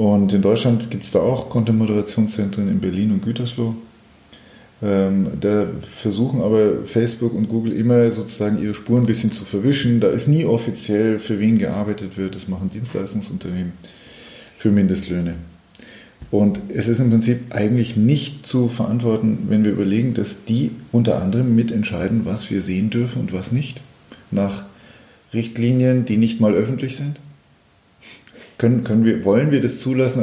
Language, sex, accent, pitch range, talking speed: English, male, German, 105-125 Hz, 150 wpm